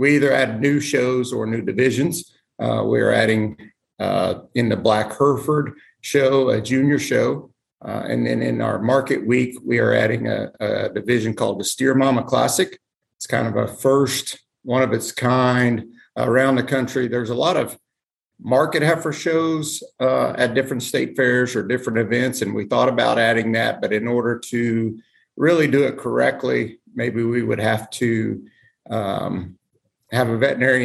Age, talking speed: 50-69, 170 wpm